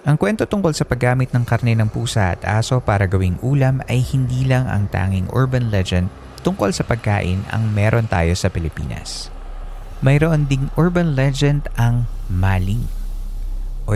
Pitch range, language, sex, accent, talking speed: 100-125 Hz, Filipino, male, native, 155 wpm